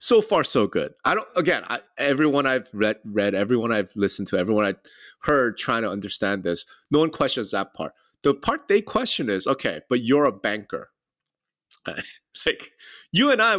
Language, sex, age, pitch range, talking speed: English, male, 30-49, 105-140 Hz, 185 wpm